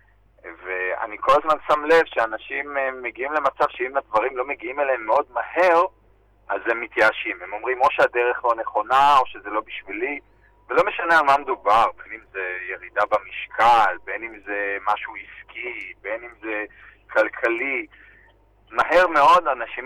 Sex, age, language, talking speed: male, 30-49, Hebrew, 150 wpm